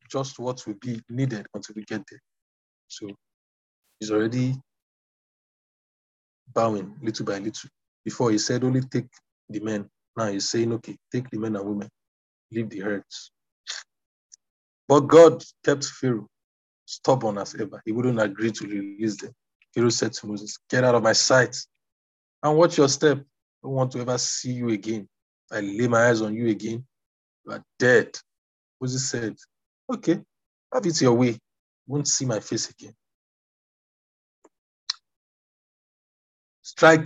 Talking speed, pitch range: 150 wpm, 105-130 Hz